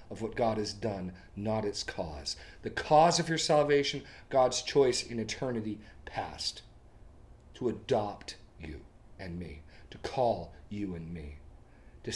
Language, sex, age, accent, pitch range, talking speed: English, male, 40-59, American, 105-160 Hz, 145 wpm